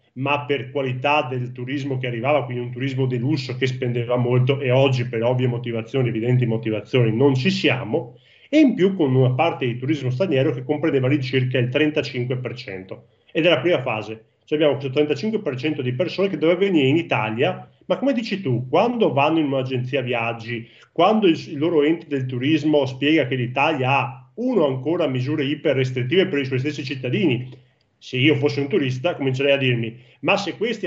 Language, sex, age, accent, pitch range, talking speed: Italian, male, 40-59, native, 125-145 Hz, 185 wpm